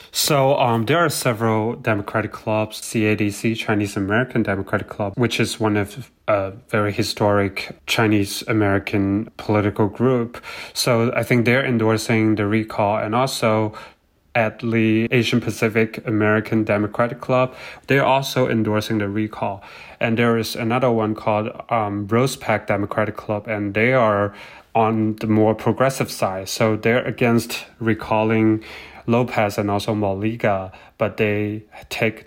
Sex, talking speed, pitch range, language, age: male, 140 wpm, 105-120 Hz, English, 30-49